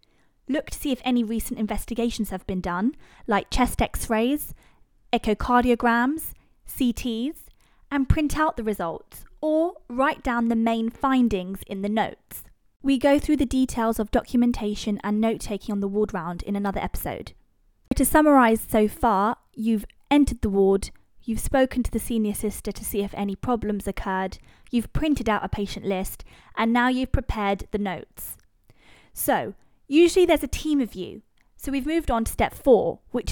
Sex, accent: female, British